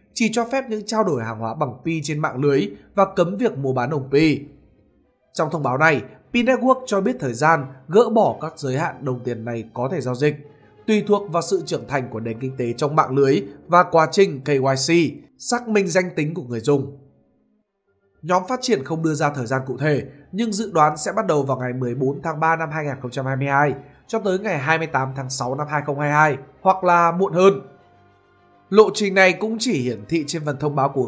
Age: 20-39